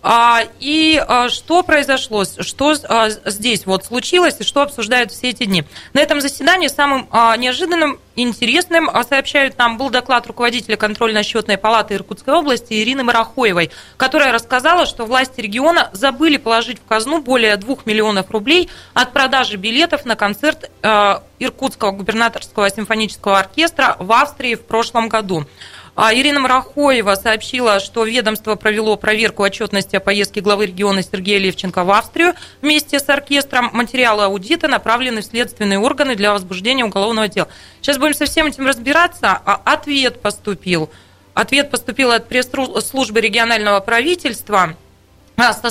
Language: Russian